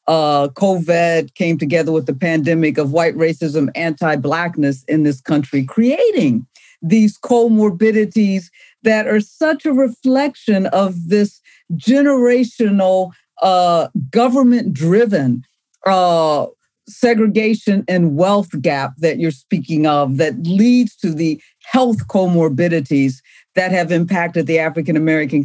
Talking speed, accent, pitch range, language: 110 wpm, American, 160-215 Hz, English